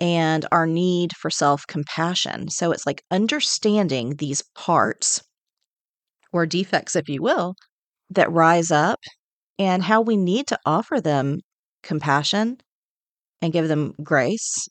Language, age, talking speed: English, 40-59, 125 wpm